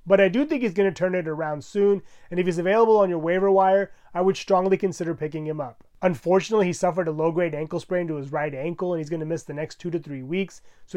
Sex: male